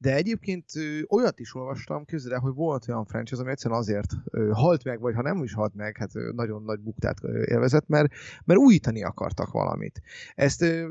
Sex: male